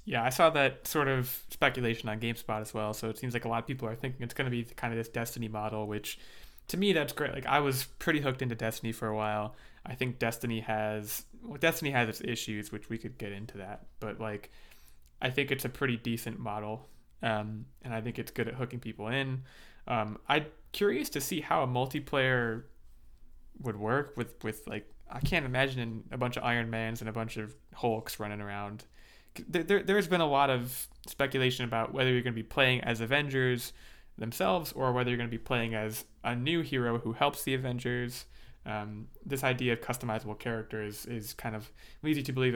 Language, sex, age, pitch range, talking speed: English, male, 20-39, 110-130 Hz, 210 wpm